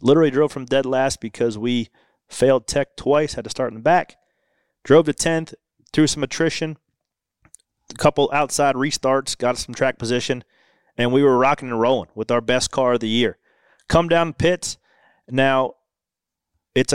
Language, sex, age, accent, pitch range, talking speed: English, male, 30-49, American, 115-145 Hz, 170 wpm